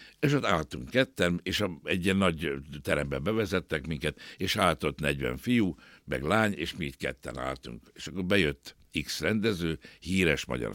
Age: 60-79